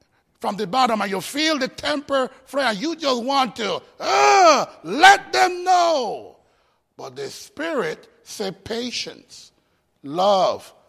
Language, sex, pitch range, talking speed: English, male, 265-355 Hz, 125 wpm